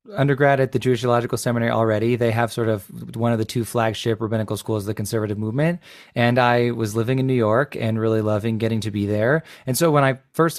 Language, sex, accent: English, male, American